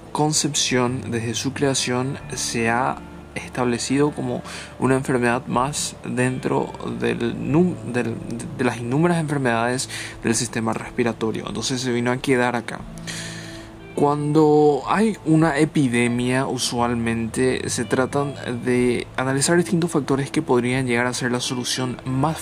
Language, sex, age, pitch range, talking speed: Spanish, male, 20-39, 115-140 Hz, 125 wpm